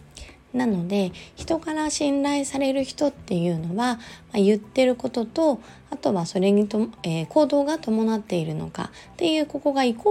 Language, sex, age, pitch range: Japanese, female, 20-39, 170-255 Hz